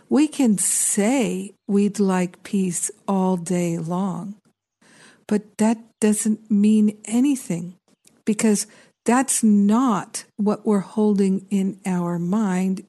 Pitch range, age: 185-215 Hz, 50-69